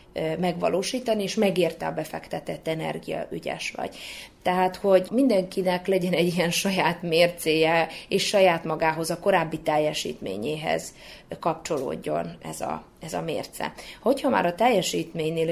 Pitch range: 160-185 Hz